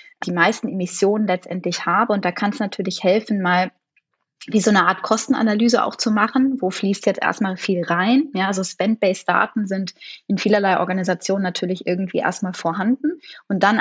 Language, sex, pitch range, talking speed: German, female, 185-230 Hz, 170 wpm